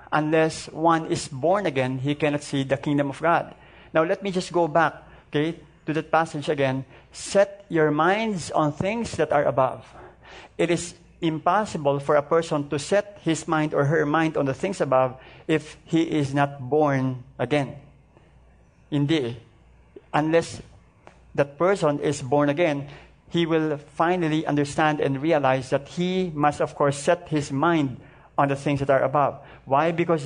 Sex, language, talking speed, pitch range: male, English, 165 wpm, 140-170 Hz